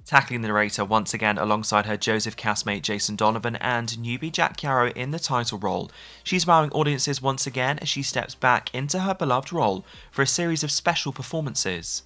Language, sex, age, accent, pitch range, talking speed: English, male, 20-39, British, 110-150 Hz, 190 wpm